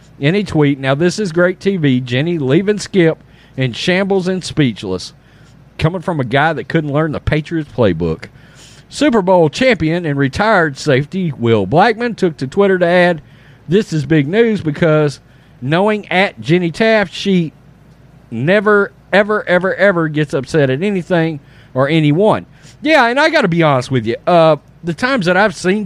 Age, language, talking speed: 40-59, English, 165 wpm